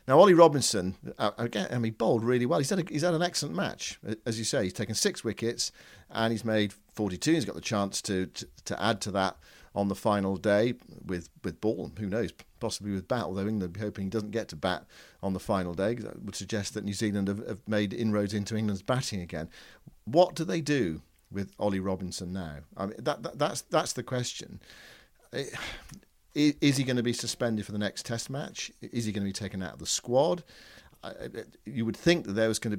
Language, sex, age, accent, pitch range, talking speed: English, male, 50-69, British, 95-120 Hz, 225 wpm